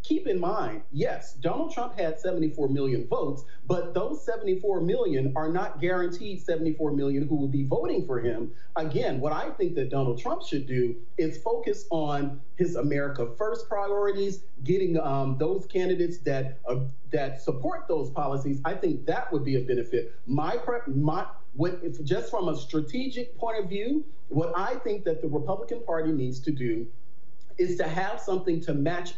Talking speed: 175 wpm